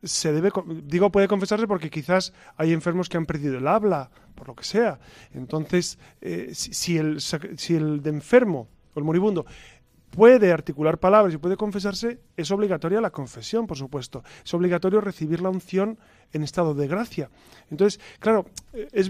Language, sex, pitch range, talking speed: Spanish, male, 155-215 Hz, 170 wpm